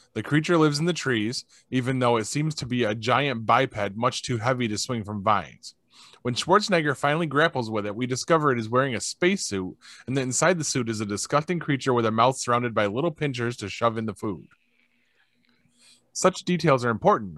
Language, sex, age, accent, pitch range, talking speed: English, male, 20-39, American, 115-140 Hz, 205 wpm